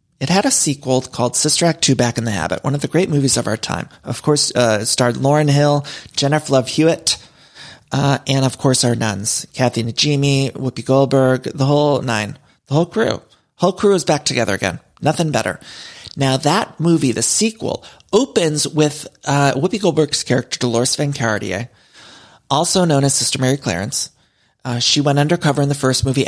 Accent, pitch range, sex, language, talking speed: American, 125-155 Hz, male, English, 185 wpm